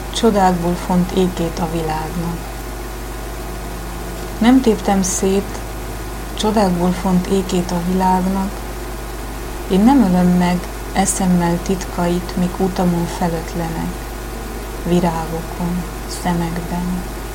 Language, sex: Hungarian, female